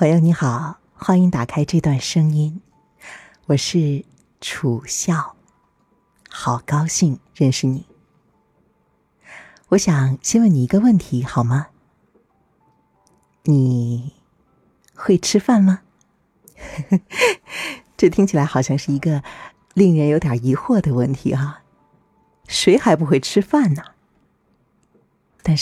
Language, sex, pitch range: Chinese, female, 135-180 Hz